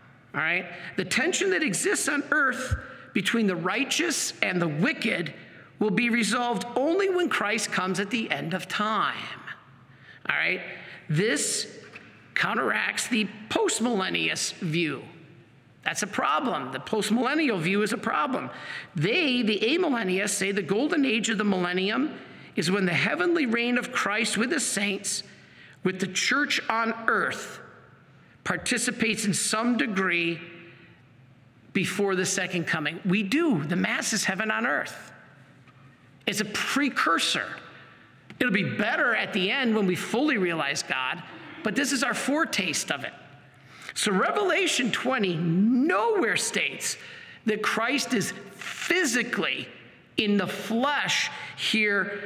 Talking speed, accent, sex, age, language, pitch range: 135 wpm, American, male, 50-69, English, 180-245 Hz